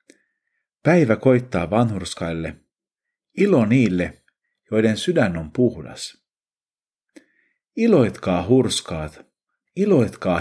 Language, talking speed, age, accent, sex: Finnish, 70 wpm, 50-69, native, male